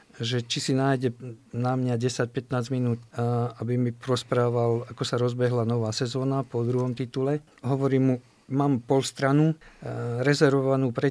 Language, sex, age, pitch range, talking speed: Slovak, male, 50-69, 120-145 Hz, 140 wpm